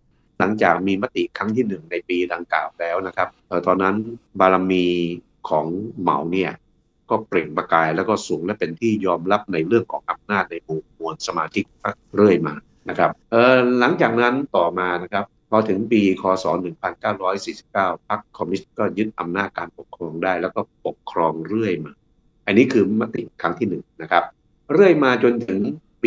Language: Thai